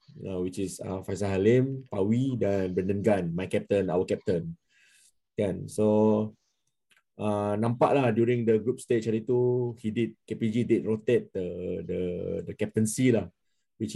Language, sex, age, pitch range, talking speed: Malay, male, 20-39, 110-130 Hz, 155 wpm